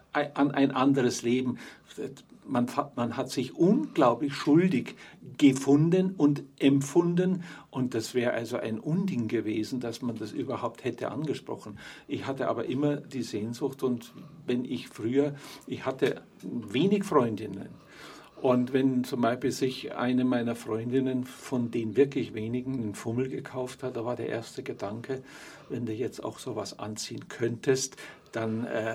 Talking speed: 145 wpm